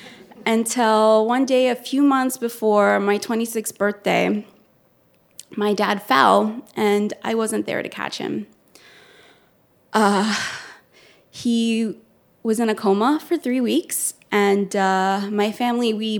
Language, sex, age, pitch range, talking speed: English, female, 20-39, 200-235 Hz, 125 wpm